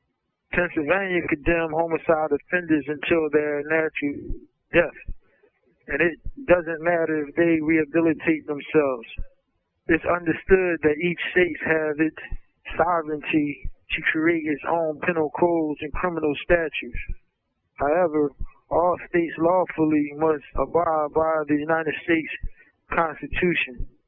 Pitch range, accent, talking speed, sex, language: 150-170 Hz, American, 110 wpm, male, English